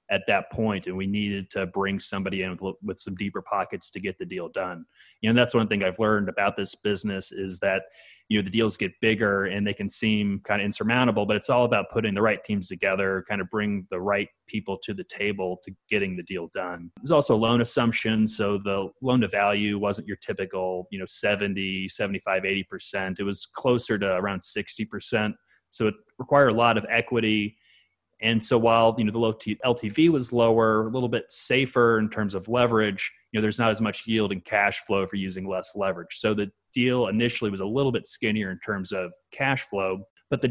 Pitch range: 95-115 Hz